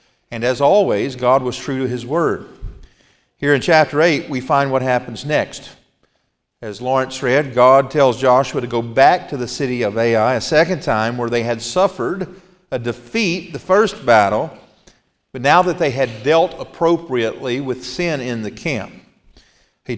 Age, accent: 50-69, American